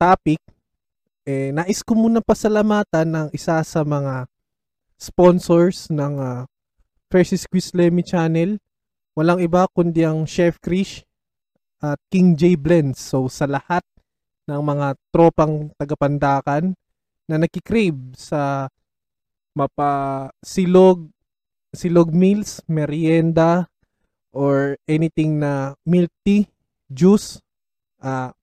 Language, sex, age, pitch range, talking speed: Filipino, male, 20-39, 145-180 Hz, 100 wpm